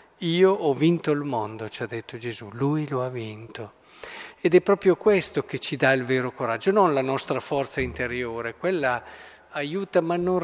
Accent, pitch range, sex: native, 120-170 Hz, male